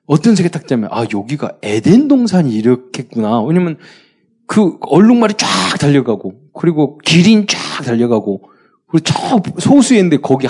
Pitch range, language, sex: 115-185 Hz, Korean, male